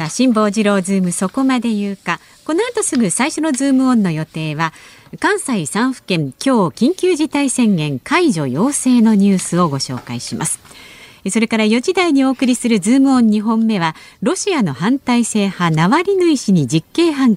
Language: Japanese